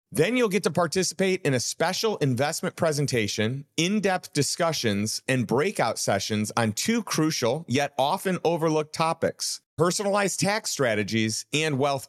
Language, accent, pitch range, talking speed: English, American, 125-185 Hz, 135 wpm